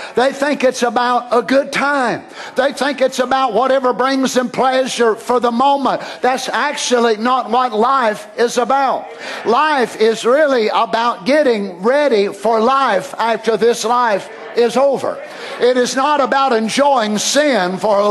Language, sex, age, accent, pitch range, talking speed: English, male, 50-69, American, 220-265 Hz, 150 wpm